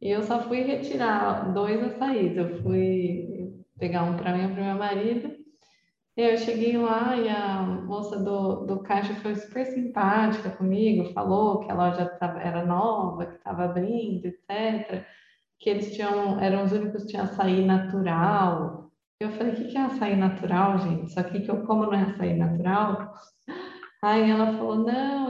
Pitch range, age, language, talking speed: 190-230 Hz, 20-39, Portuguese, 175 wpm